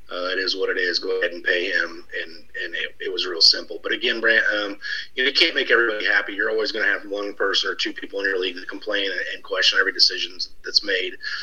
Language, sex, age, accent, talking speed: English, male, 30-49, American, 270 wpm